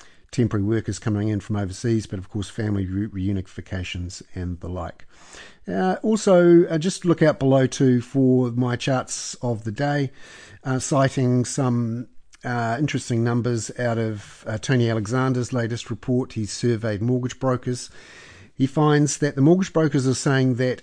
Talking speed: 155 wpm